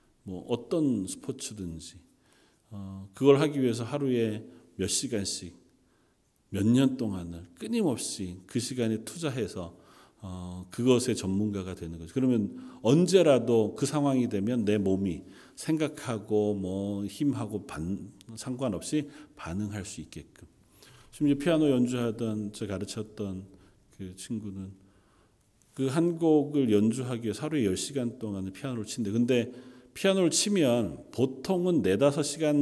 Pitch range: 100-145 Hz